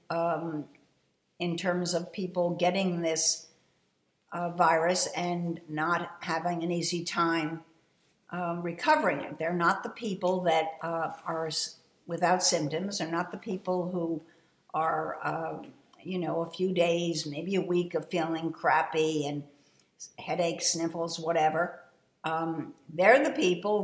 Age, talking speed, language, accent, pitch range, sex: 60-79, 135 wpm, English, American, 160-185 Hz, female